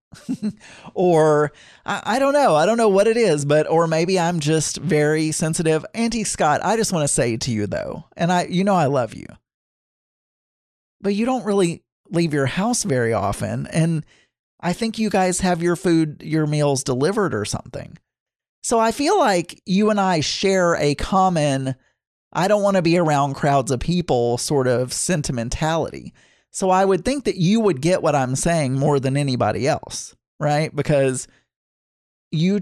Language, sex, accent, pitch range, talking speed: English, male, American, 140-195 Hz, 180 wpm